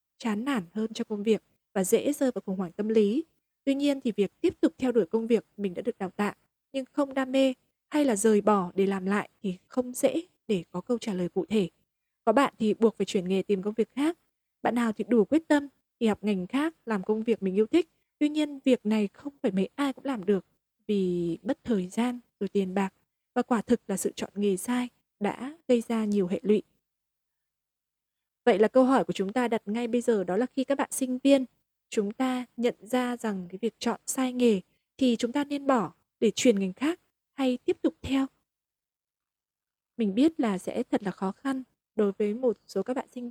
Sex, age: female, 20-39